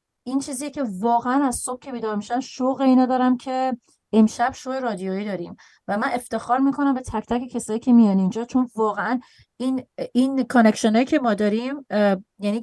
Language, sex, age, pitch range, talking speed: Persian, female, 30-49, 200-255 Hz, 175 wpm